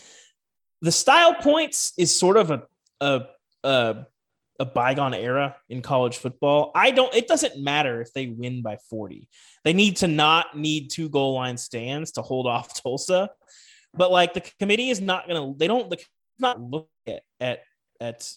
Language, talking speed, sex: English, 175 wpm, male